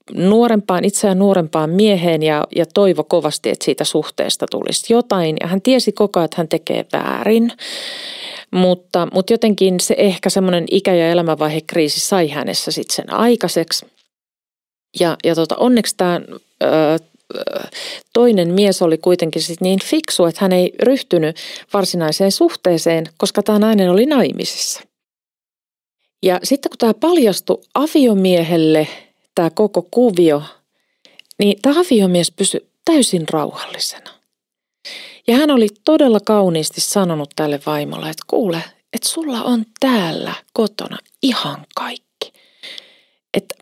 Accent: native